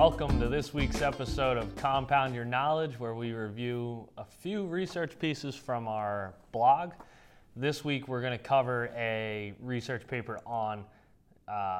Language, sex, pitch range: English, male, 105-125 Hz